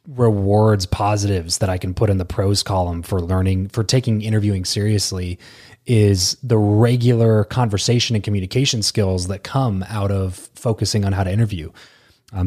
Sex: male